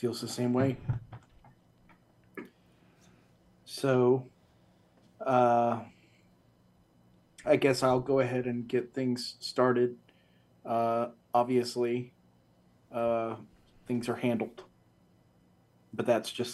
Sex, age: male, 30-49